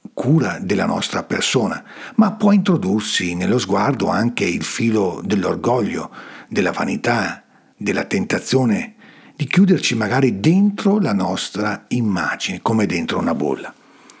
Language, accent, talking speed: Italian, native, 120 wpm